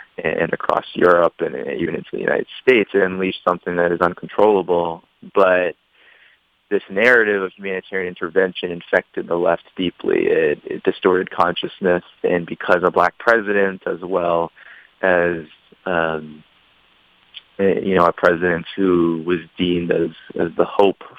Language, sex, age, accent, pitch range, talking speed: English, male, 20-39, American, 90-110 Hz, 140 wpm